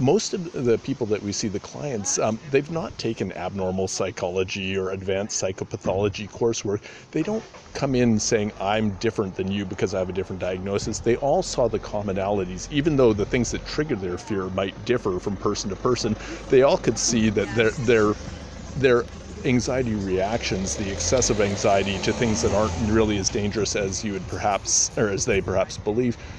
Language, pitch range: English, 100-120 Hz